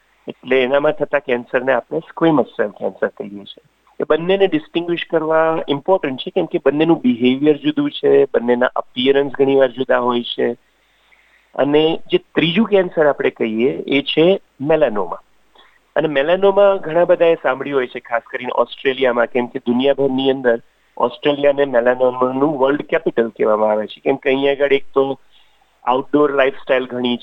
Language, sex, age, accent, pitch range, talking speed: Gujarati, male, 40-59, native, 120-155 Hz, 105 wpm